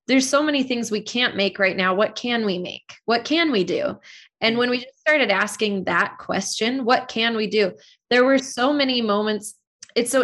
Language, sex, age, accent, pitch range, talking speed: English, female, 20-39, American, 200-250 Hz, 205 wpm